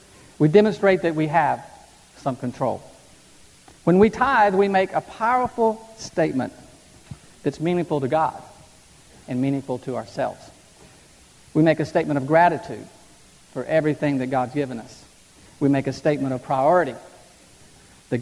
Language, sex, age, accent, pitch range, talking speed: English, male, 50-69, American, 130-160 Hz, 140 wpm